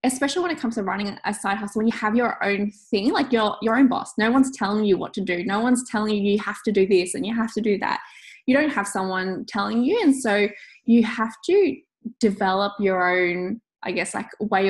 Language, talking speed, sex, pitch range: English, 245 wpm, female, 200-245 Hz